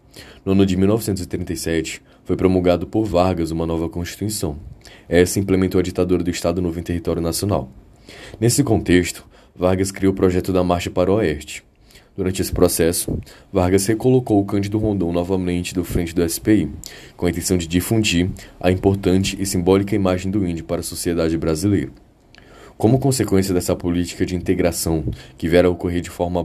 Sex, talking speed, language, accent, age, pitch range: male, 165 wpm, Portuguese, Brazilian, 10-29, 85-100 Hz